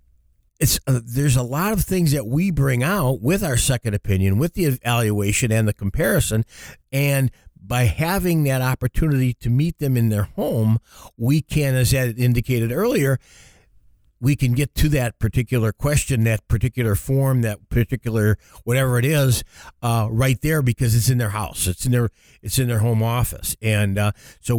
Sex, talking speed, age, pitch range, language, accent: male, 175 wpm, 50-69, 110-135 Hz, English, American